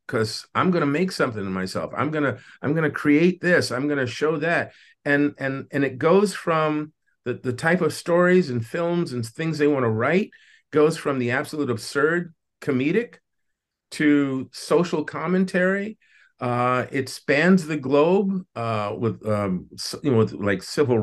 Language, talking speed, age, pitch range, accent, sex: English, 175 wpm, 50-69, 115-155 Hz, American, male